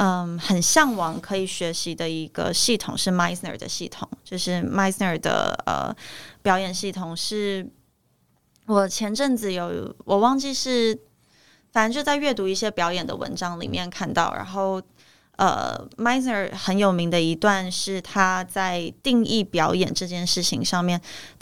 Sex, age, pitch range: female, 20-39, 180-215 Hz